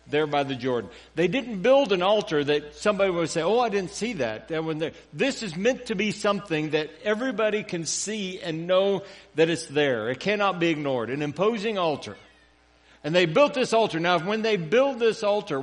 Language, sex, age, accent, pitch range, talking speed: English, male, 60-79, American, 145-205 Hz, 205 wpm